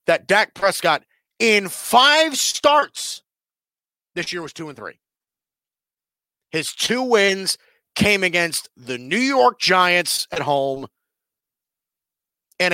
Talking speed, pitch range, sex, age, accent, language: 115 wpm, 155-230 Hz, male, 40-59, American, English